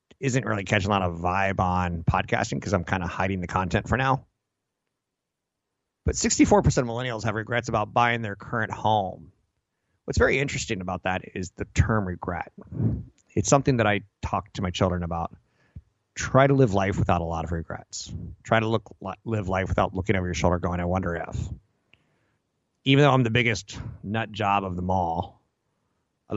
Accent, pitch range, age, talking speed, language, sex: American, 90-115 Hz, 30-49, 185 wpm, English, male